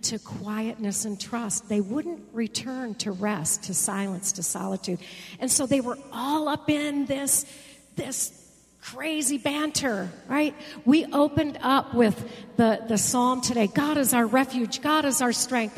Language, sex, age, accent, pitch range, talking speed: English, female, 50-69, American, 210-270 Hz, 155 wpm